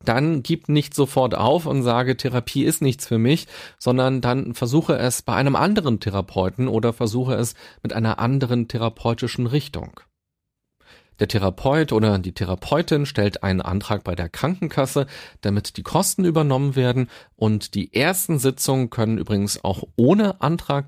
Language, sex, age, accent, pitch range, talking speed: German, male, 40-59, German, 105-140 Hz, 150 wpm